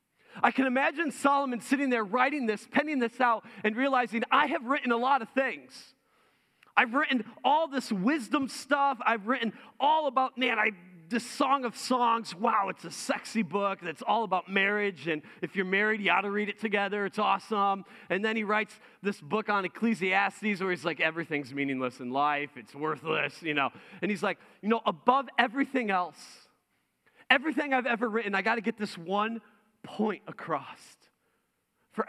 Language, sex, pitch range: English, male, 180-245 Hz